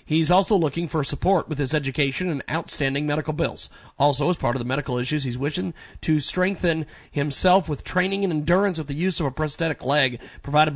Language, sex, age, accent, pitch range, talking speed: English, male, 40-59, American, 150-200 Hz, 200 wpm